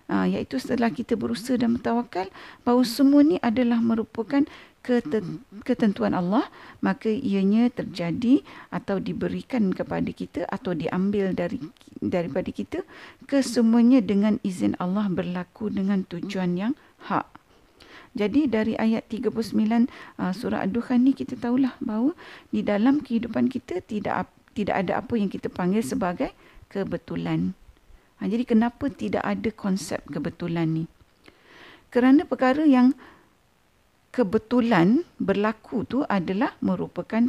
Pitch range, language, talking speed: 190-250 Hz, Malay, 120 wpm